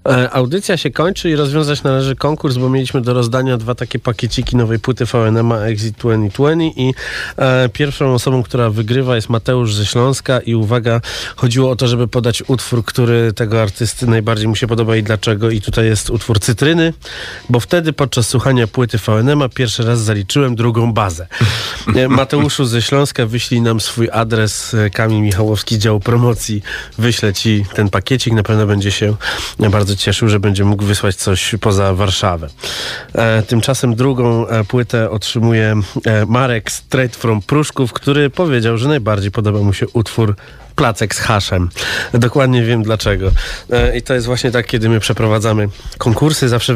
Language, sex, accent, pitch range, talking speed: Polish, male, native, 110-130 Hz, 165 wpm